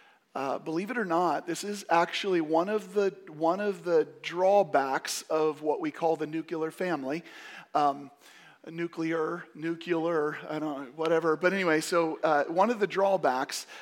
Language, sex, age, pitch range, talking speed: English, male, 40-59, 150-180 Hz, 150 wpm